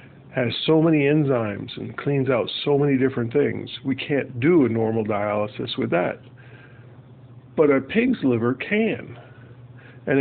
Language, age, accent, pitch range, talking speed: English, 50-69, American, 120-140 Hz, 145 wpm